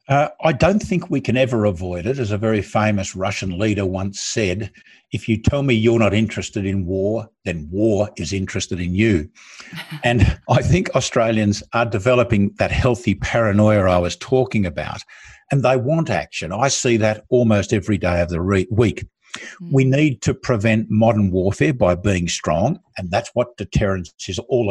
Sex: male